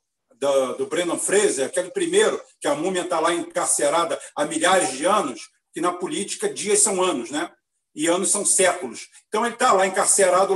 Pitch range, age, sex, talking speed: 205-285 Hz, 50-69, male, 180 wpm